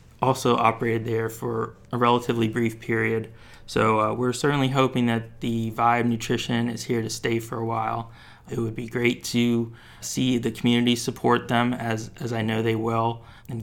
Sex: male